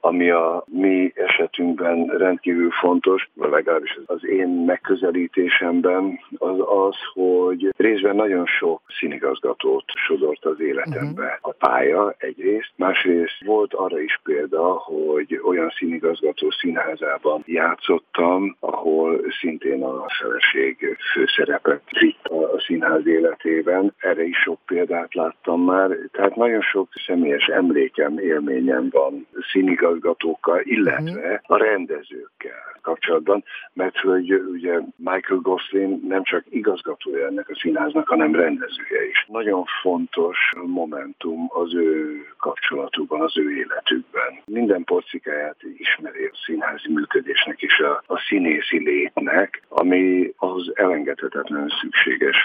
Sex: male